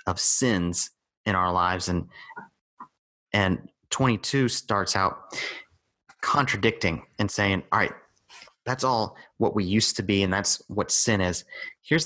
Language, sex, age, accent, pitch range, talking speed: English, male, 30-49, American, 95-120 Hz, 140 wpm